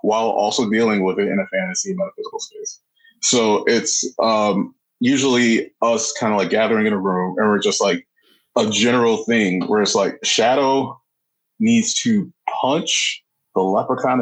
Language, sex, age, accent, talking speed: English, male, 20-39, American, 160 wpm